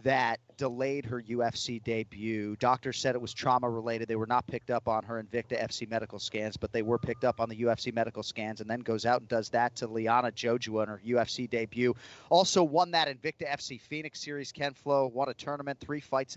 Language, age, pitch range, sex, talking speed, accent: English, 30-49, 115-145 Hz, male, 215 wpm, American